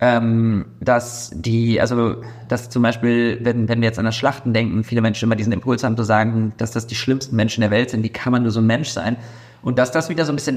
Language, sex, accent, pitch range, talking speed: German, male, German, 115-135 Hz, 255 wpm